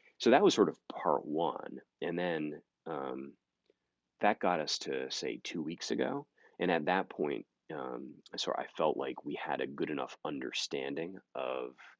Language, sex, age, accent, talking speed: English, male, 30-49, American, 170 wpm